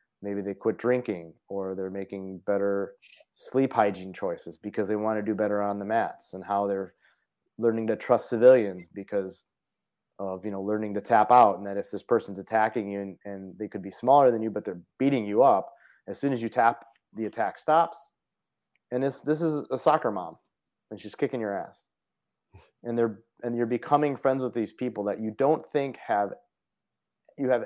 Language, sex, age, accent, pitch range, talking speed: English, male, 30-49, American, 100-120 Hz, 195 wpm